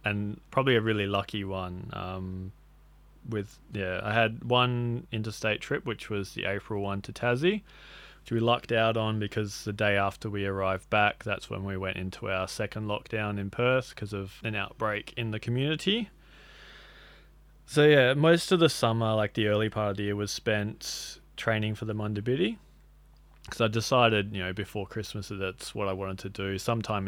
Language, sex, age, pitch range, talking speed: English, male, 20-39, 95-115 Hz, 185 wpm